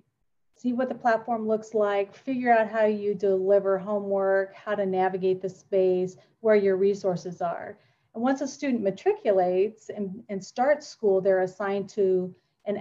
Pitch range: 185-215 Hz